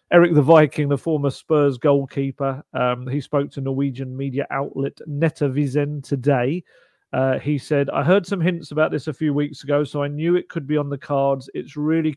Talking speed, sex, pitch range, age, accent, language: 200 wpm, male, 130-155 Hz, 40-59, British, English